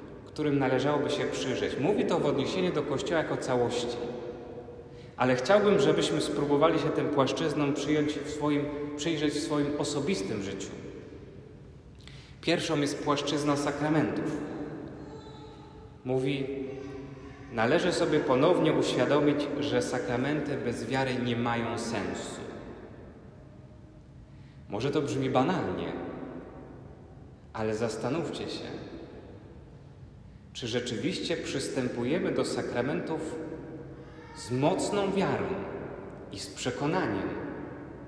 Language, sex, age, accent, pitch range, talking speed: Polish, male, 30-49, native, 120-155 Hz, 90 wpm